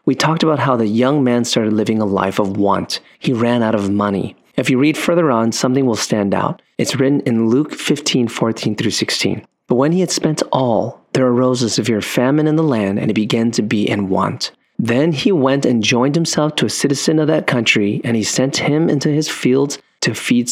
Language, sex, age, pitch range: English, male, 30-49, 115-150 Hz